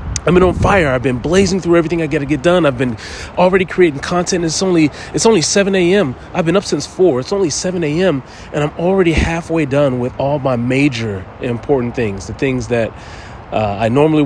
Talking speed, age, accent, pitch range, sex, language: 215 wpm, 30-49, American, 115-165 Hz, male, English